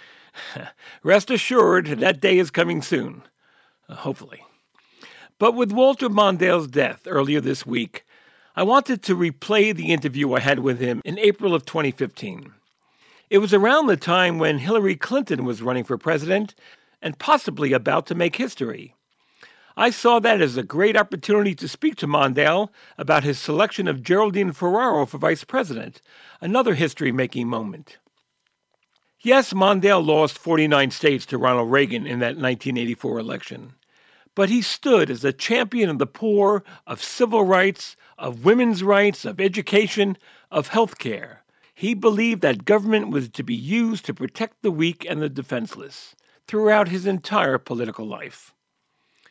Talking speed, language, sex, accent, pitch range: 150 wpm, English, male, American, 145-215 Hz